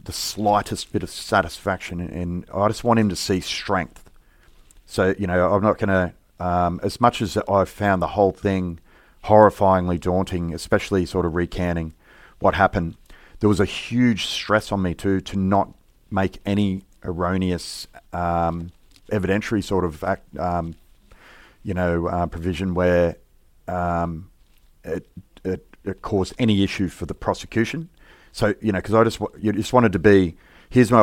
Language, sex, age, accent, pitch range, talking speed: English, male, 30-49, Australian, 90-105 Hz, 165 wpm